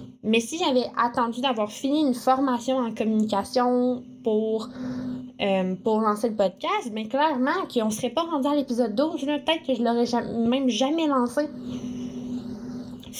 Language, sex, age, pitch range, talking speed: French, female, 10-29, 225-255 Hz, 170 wpm